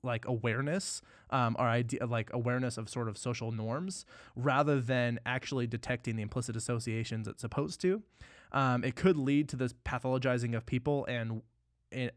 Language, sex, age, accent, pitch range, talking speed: English, male, 20-39, American, 115-145 Hz, 165 wpm